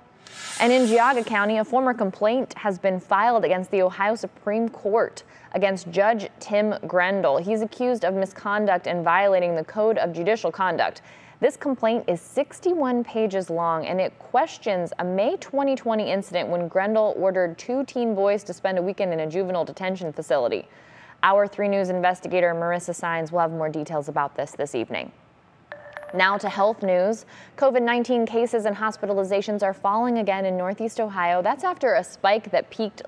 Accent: American